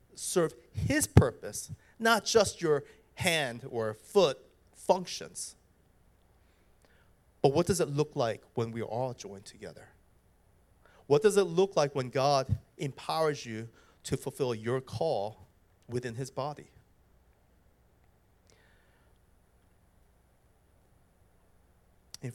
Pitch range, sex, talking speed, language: 115-165 Hz, male, 105 wpm, English